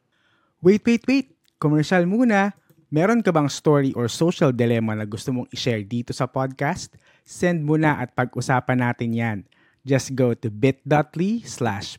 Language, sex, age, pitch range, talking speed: Filipino, male, 20-39, 125-195 Hz, 150 wpm